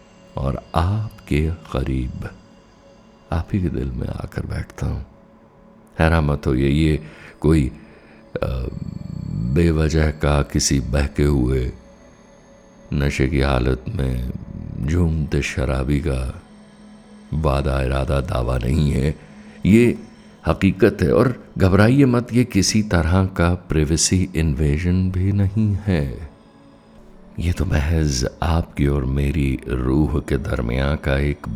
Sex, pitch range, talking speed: male, 70-90 Hz, 110 wpm